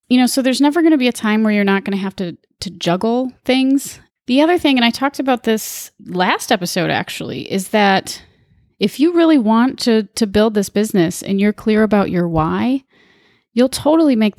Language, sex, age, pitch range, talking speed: English, female, 30-49, 185-230 Hz, 210 wpm